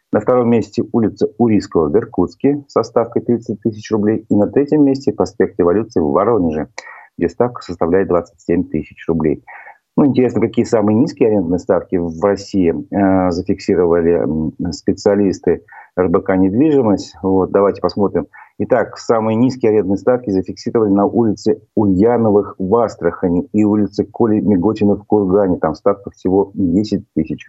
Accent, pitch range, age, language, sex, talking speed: native, 95-125 Hz, 40-59, Russian, male, 140 wpm